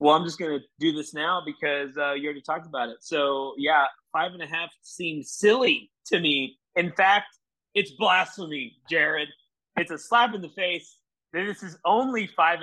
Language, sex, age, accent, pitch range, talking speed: English, male, 30-49, American, 130-165 Hz, 190 wpm